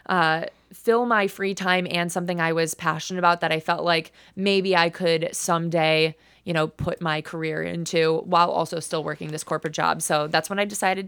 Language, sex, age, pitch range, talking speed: English, female, 20-39, 160-180 Hz, 200 wpm